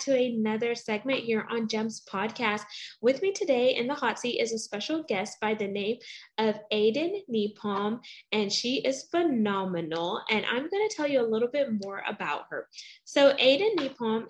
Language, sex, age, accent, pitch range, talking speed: English, female, 10-29, American, 215-290 Hz, 180 wpm